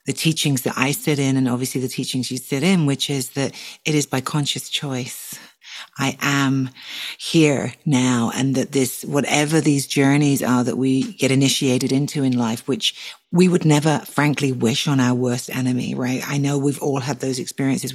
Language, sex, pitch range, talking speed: English, female, 130-145 Hz, 190 wpm